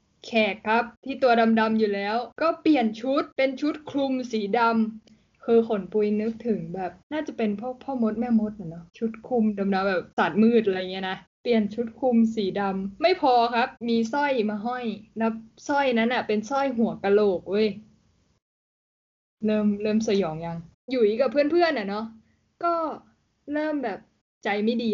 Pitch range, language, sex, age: 210-265 Hz, Thai, female, 10-29